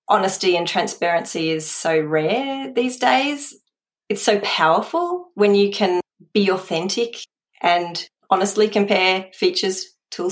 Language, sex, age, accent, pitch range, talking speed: English, female, 30-49, Australian, 165-210 Hz, 120 wpm